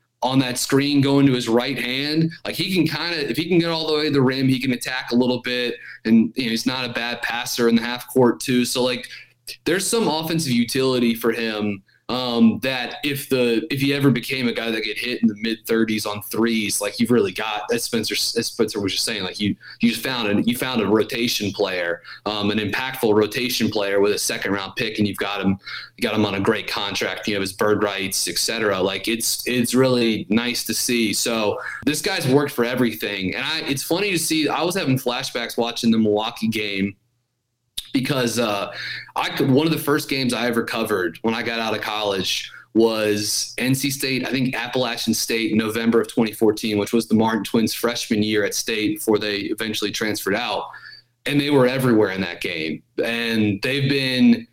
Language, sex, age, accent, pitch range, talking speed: English, male, 20-39, American, 110-130 Hz, 210 wpm